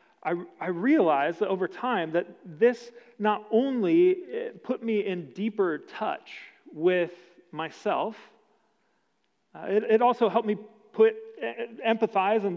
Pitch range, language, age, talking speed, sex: 175-230 Hz, English, 40-59, 105 wpm, male